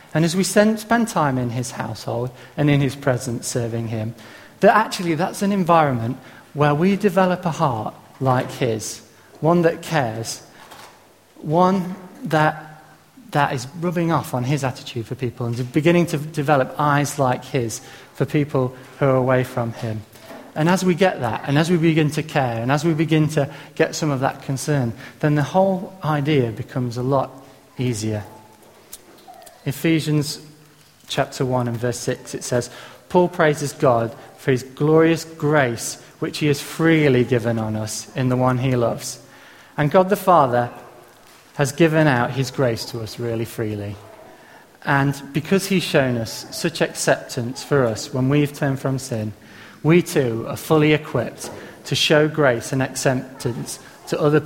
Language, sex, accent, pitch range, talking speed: English, male, British, 120-155 Hz, 165 wpm